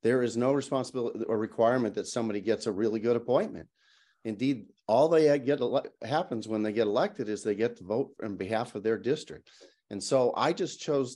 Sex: male